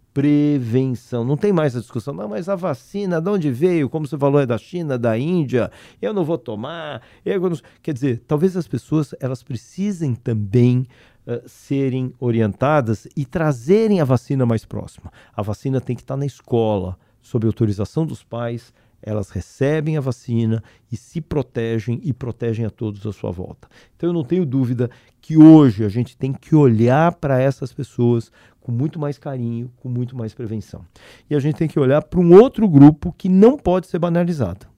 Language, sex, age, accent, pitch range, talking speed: Portuguese, male, 40-59, Brazilian, 115-155 Hz, 180 wpm